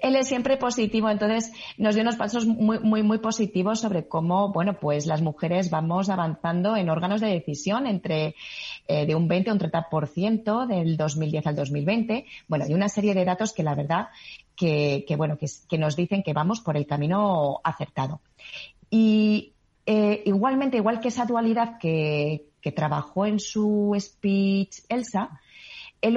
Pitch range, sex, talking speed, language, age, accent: 160-215 Hz, female, 170 wpm, Spanish, 30-49, Spanish